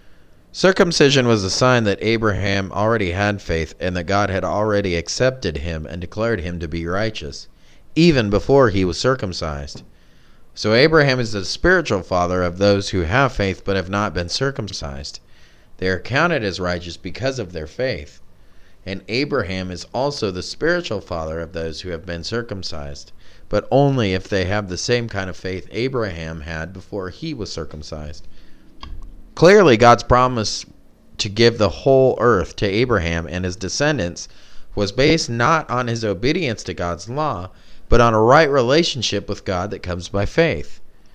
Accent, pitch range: American, 85-115 Hz